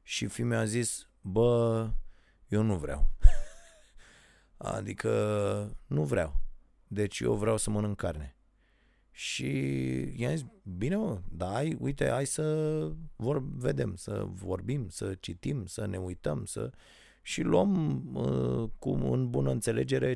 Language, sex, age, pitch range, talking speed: Romanian, male, 30-49, 95-125 Hz, 120 wpm